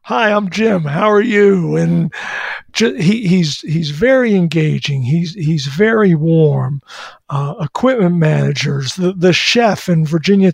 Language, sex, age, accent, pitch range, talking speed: English, male, 50-69, American, 150-185 Hz, 135 wpm